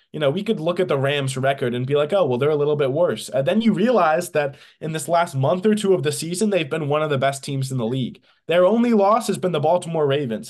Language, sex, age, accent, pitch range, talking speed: English, male, 20-39, American, 130-180 Hz, 290 wpm